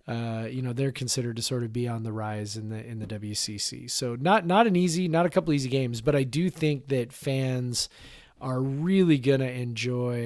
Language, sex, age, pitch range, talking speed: English, male, 30-49, 115-145 Hz, 220 wpm